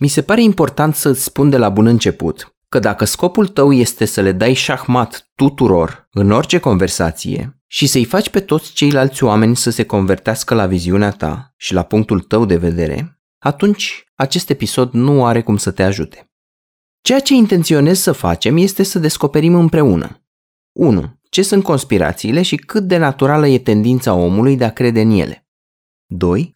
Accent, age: native, 20-39